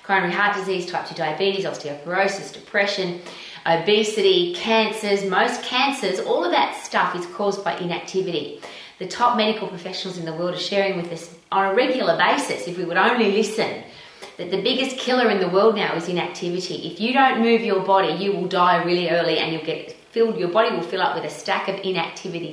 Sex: female